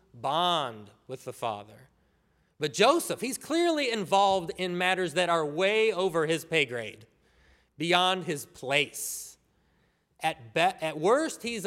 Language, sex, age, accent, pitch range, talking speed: English, male, 20-39, American, 145-195 Hz, 135 wpm